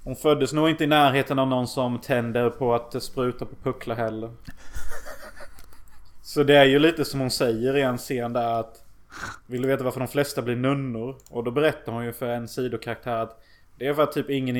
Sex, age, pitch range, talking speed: male, 20-39, 120-140 Hz, 215 wpm